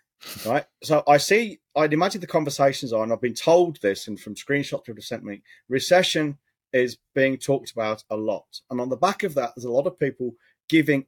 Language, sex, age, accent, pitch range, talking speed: English, male, 40-59, British, 120-170 Hz, 210 wpm